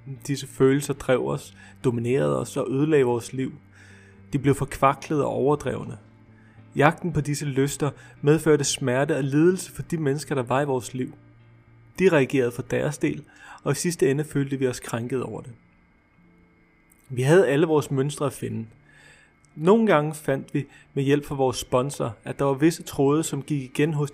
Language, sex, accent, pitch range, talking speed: Danish, male, native, 125-155 Hz, 175 wpm